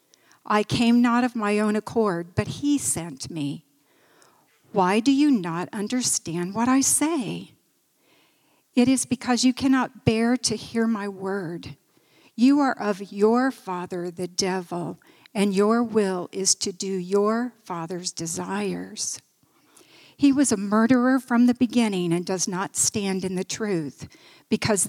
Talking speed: 145 wpm